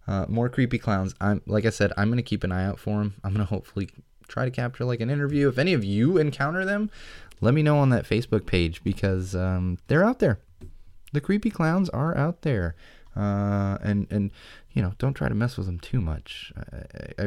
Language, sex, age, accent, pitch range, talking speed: English, male, 20-39, American, 90-120 Hz, 220 wpm